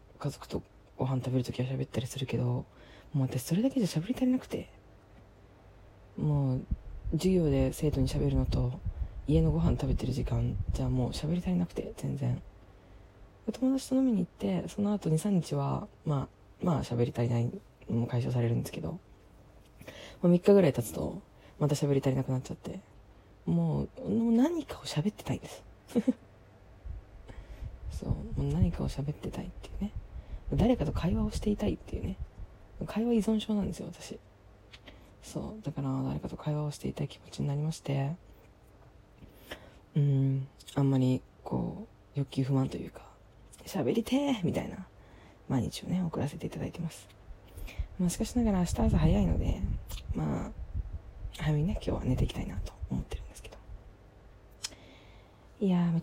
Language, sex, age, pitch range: Japanese, female, 20-39, 100-160 Hz